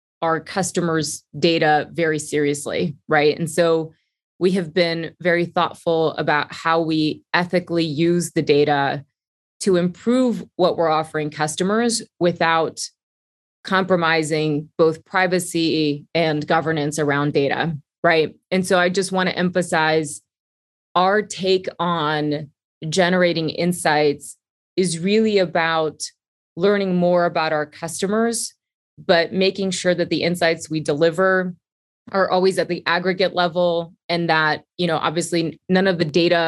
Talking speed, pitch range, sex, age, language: 130 wpm, 155-185 Hz, female, 20-39, English